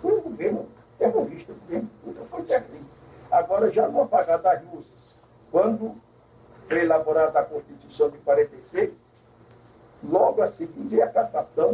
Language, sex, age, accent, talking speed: Portuguese, male, 60-79, Brazilian, 145 wpm